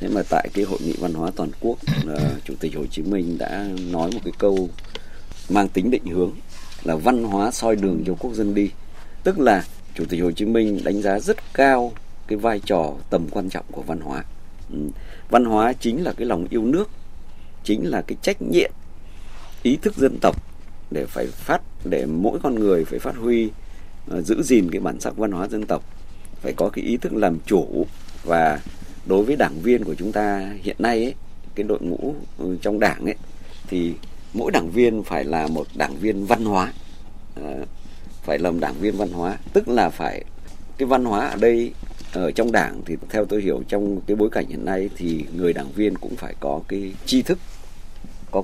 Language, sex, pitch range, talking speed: Vietnamese, male, 85-105 Hz, 200 wpm